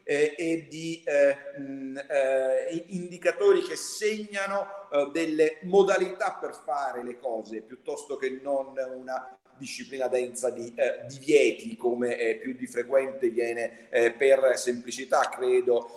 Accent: native